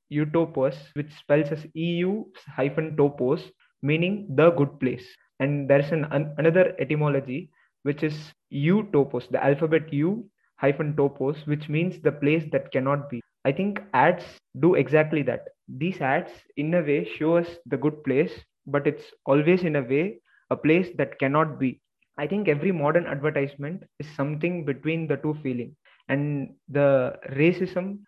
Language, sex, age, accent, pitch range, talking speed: English, male, 20-39, Indian, 140-165 Hz, 155 wpm